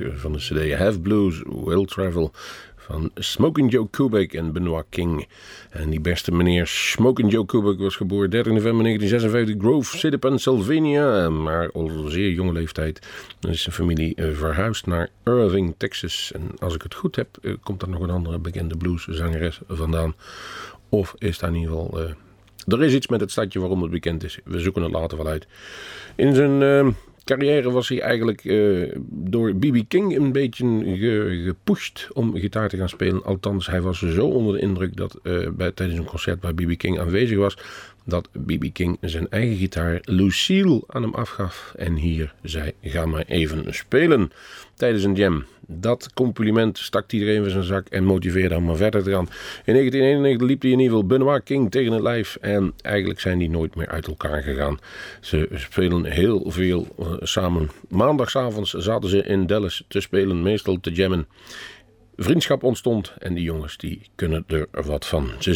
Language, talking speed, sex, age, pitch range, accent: Dutch, 180 wpm, male, 40-59, 85-115 Hz, Dutch